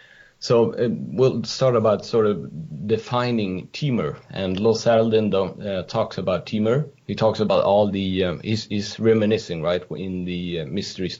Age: 30-49